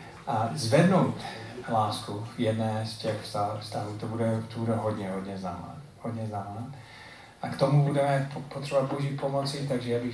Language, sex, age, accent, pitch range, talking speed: Czech, male, 40-59, native, 100-125 Hz, 150 wpm